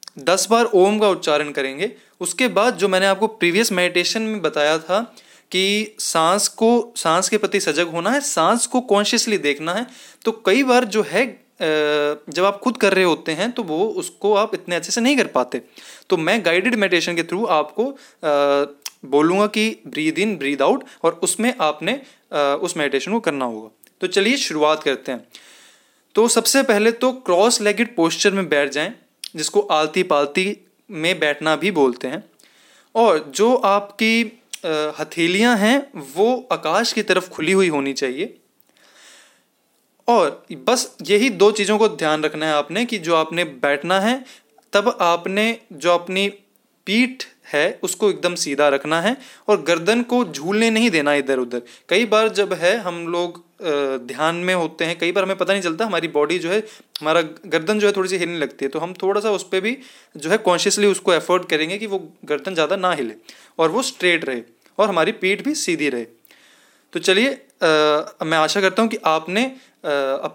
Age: 20-39